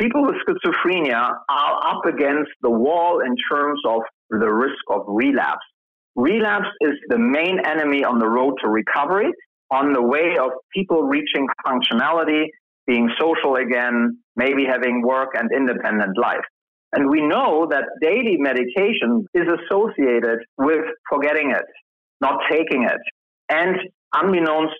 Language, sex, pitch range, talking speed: English, male, 130-215 Hz, 140 wpm